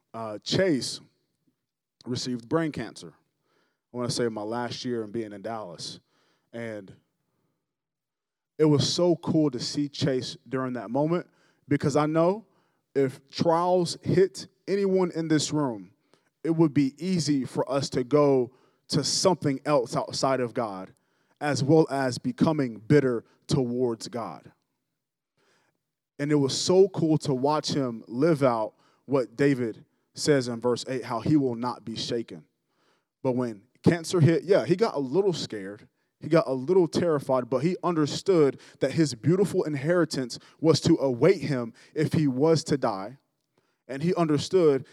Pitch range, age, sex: 130-165 Hz, 20-39, male